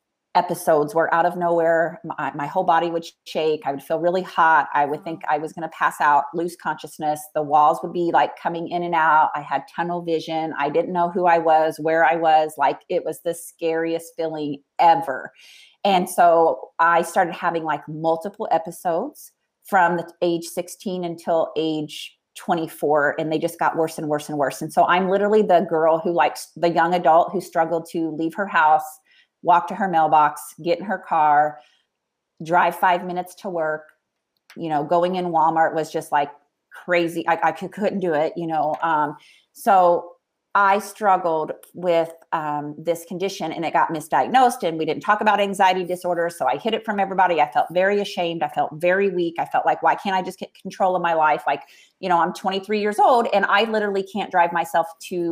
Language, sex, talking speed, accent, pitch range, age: English, female, 200 wpm, American, 155-180 Hz, 30-49